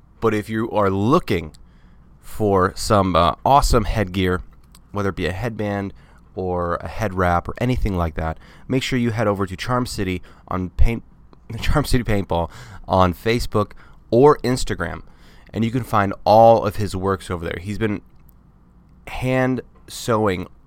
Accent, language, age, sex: American, English, 20-39, male